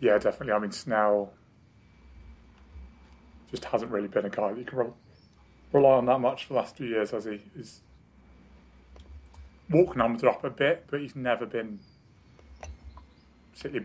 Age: 30-49